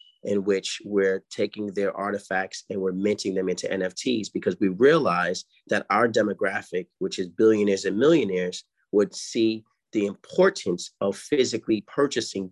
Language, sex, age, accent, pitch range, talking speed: English, male, 30-49, American, 95-110 Hz, 145 wpm